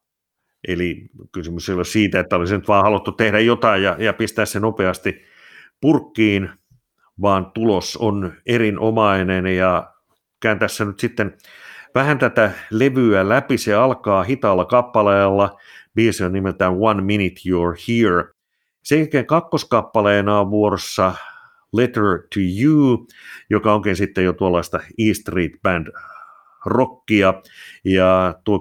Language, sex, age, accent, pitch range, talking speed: Finnish, male, 50-69, native, 90-110 Hz, 125 wpm